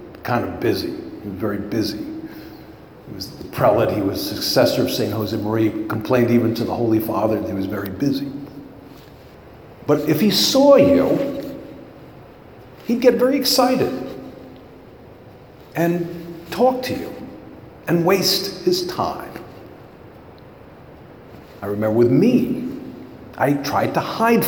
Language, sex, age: English, male, 50-69